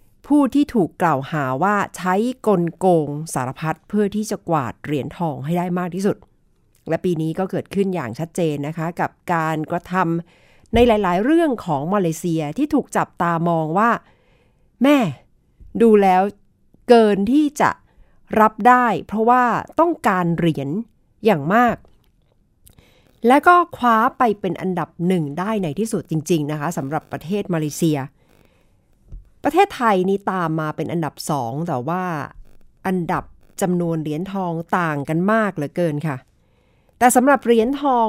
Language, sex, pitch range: Thai, female, 165-215 Hz